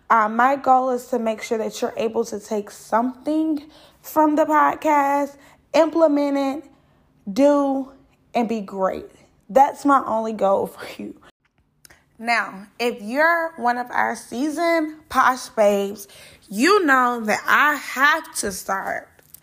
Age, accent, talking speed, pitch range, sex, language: 20-39, American, 135 wpm, 225-295 Hz, female, English